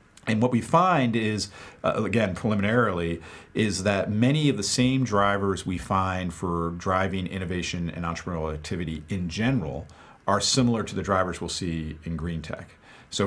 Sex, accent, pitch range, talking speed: male, American, 80-100 Hz, 165 wpm